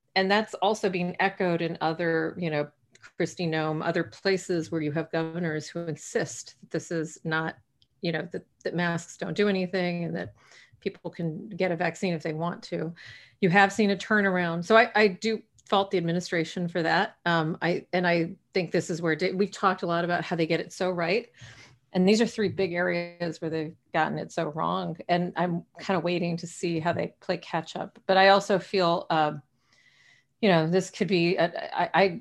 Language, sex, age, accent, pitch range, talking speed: English, female, 40-59, American, 165-190 Hz, 205 wpm